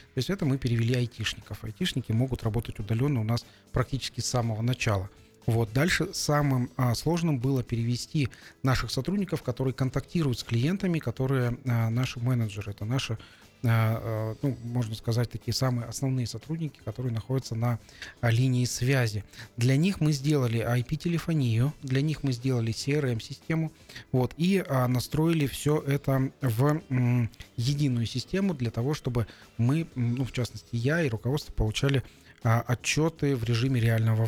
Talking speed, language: 140 wpm, Russian